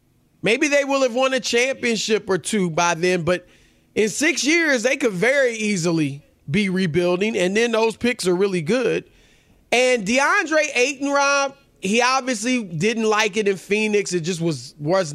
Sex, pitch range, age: male, 185-225 Hz, 30-49